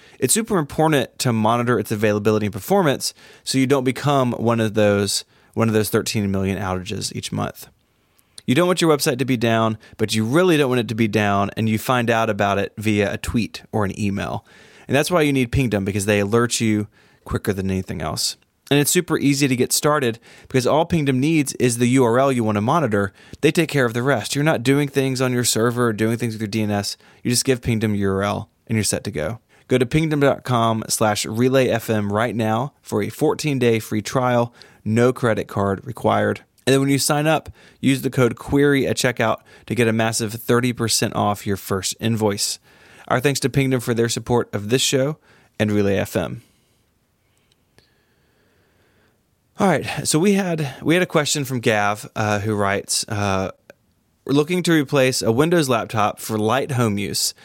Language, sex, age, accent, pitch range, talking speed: English, male, 20-39, American, 105-135 Hz, 195 wpm